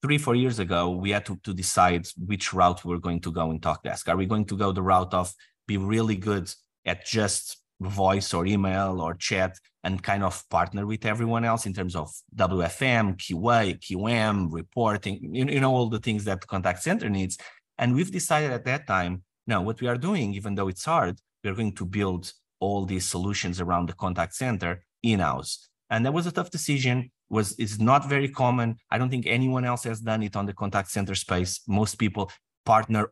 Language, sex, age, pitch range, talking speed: English, male, 30-49, 90-115 Hz, 205 wpm